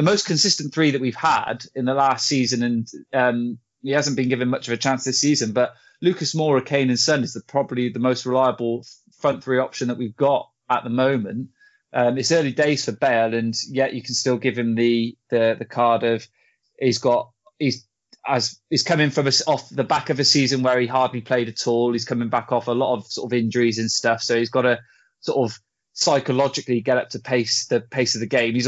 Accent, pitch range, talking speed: British, 120-135 Hz, 230 wpm